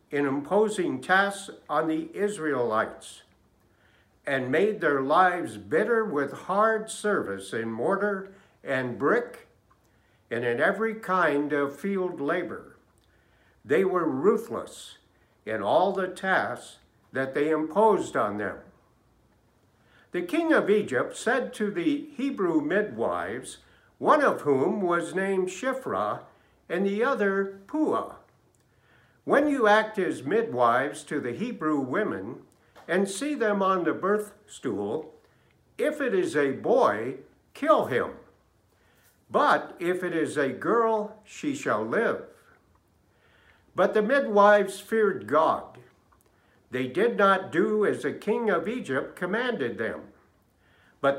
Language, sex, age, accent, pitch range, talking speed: English, male, 60-79, American, 150-225 Hz, 125 wpm